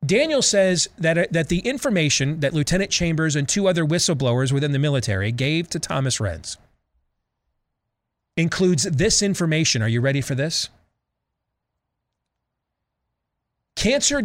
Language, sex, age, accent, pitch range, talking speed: English, male, 40-59, American, 135-205 Hz, 120 wpm